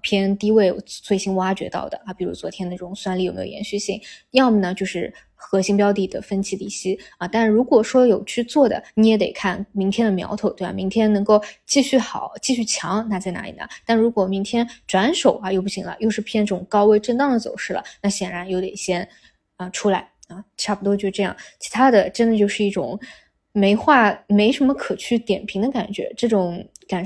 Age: 20-39